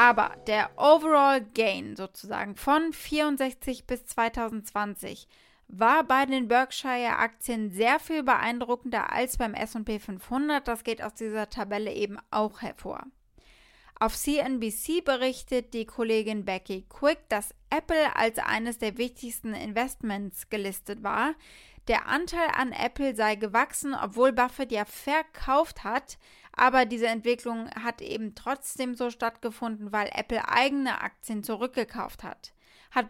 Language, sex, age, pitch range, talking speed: German, female, 20-39, 205-245 Hz, 130 wpm